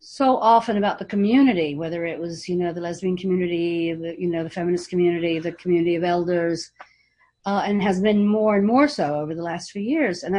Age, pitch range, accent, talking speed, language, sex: 50-69, 175-235 Hz, American, 210 wpm, English, female